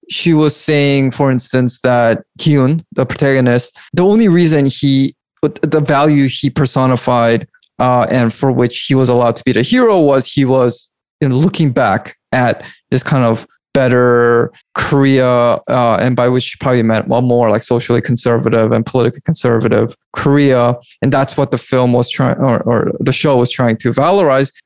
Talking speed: 180 wpm